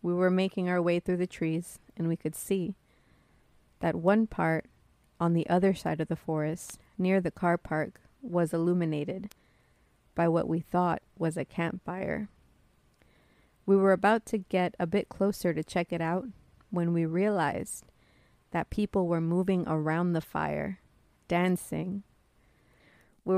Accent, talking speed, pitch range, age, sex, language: American, 150 wpm, 160-185 Hz, 30-49, female, English